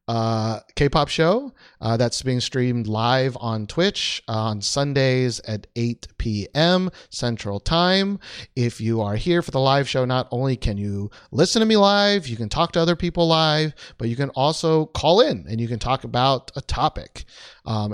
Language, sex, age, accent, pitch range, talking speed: English, male, 30-49, American, 110-150 Hz, 180 wpm